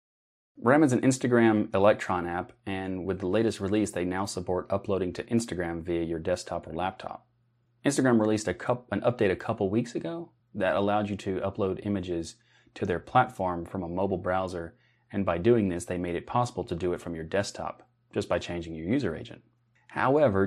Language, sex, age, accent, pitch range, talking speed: English, male, 30-49, American, 90-115 Hz, 190 wpm